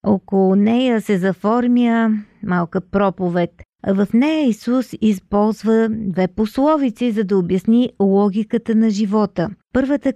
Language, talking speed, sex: Bulgarian, 110 wpm, female